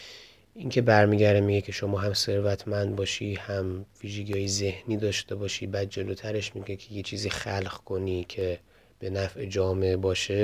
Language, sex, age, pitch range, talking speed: Persian, male, 30-49, 95-120 Hz, 160 wpm